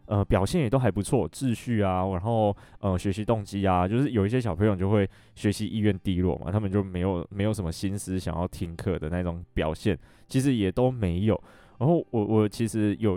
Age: 20-39